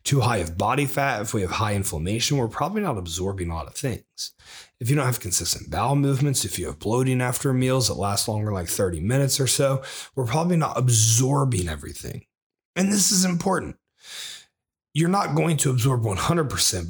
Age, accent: 30-49, American